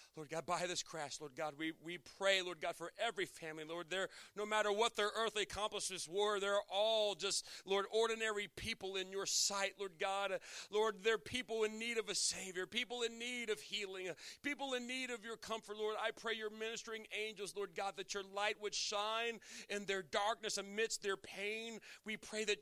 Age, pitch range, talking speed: 40-59, 180-225 Hz, 200 wpm